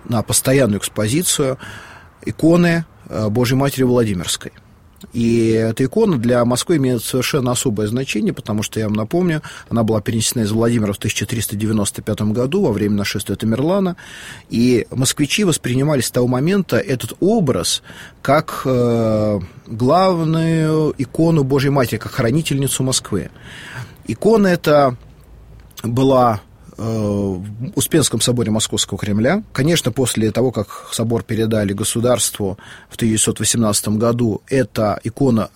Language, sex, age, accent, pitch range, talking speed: Russian, male, 30-49, native, 110-135 Hz, 120 wpm